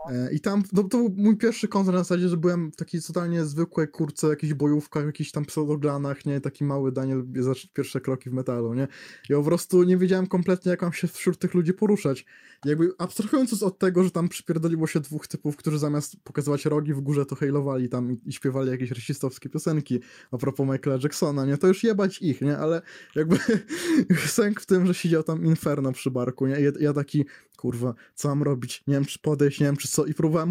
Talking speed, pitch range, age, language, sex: 215 wpm, 140-175 Hz, 20-39, Polish, male